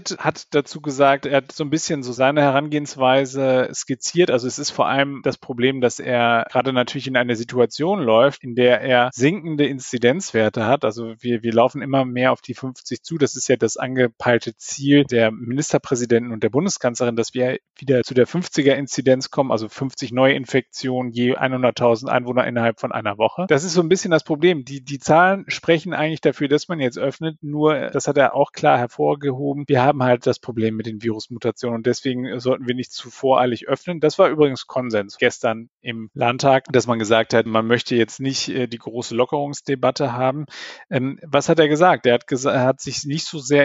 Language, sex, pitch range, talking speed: German, male, 125-150 Hz, 195 wpm